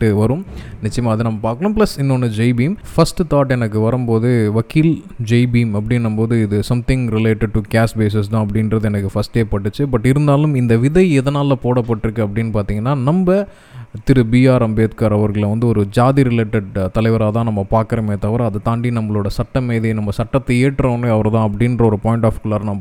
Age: 20-39